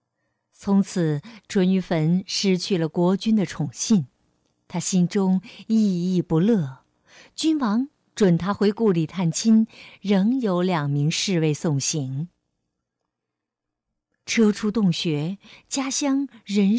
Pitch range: 165-230 Hz